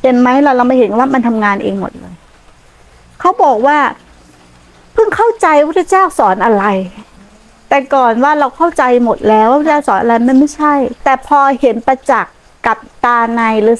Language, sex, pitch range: Thai, female, 220-275 Hz